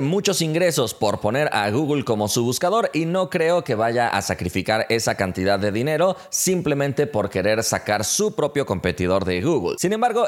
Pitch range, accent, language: 105-170 Hz, Mexican, Spanish